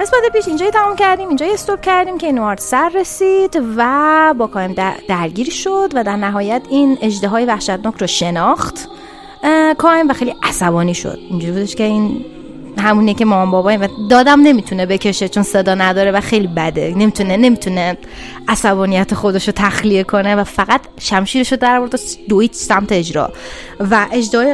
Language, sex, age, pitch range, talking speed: Persian, female, 20-39, 190-250 Hz, 160 wpm